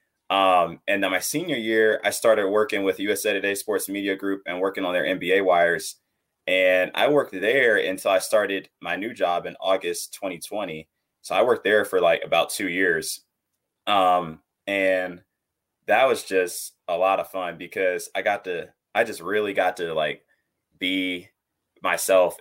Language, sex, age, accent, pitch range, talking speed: English, male, 20-39, American, 90-110 Hz, 170 wpm